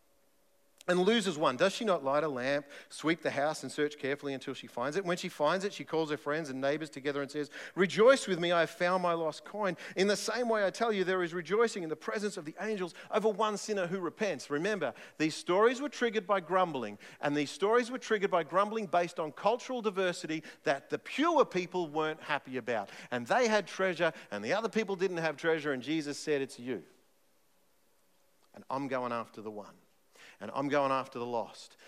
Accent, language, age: Australian, English, 40-59